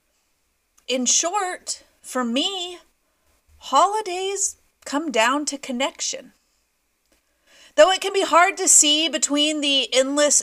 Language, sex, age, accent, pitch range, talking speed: English, female, 40-59, American, 255-320 Hz, 110 wpm